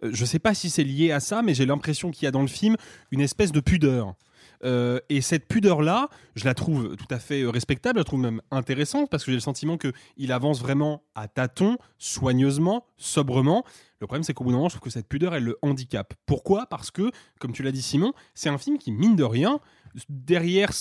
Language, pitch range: French, 130-170 Hz